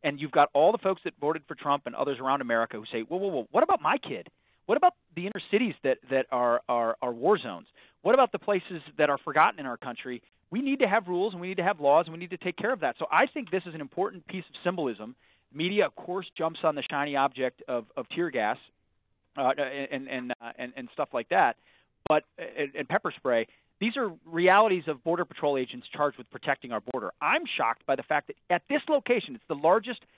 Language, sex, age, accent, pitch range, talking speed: English, male, 40-59, American, 135-195 Hz, 245 wpm